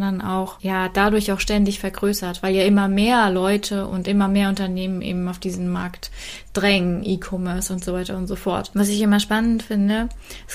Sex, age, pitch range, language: female, 20-39, 195-220 Hz, German